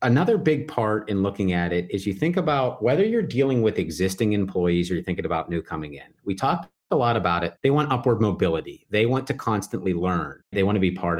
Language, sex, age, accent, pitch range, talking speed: English, male, 30-49, American, 95-145 Hz, 235 wpm